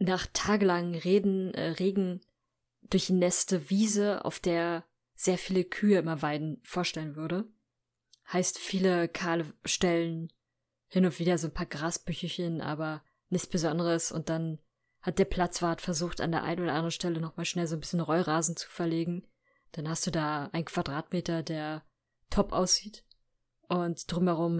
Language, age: German, 20-39